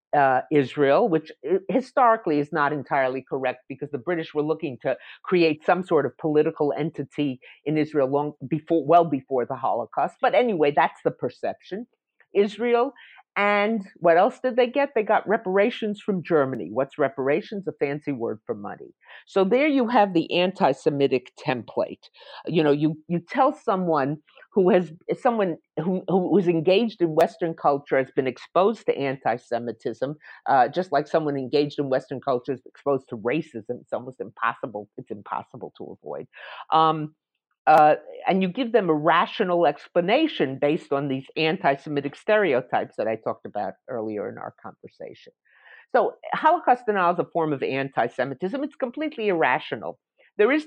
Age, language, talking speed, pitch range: 50-69, English, 160 wpm, 140-200 Hz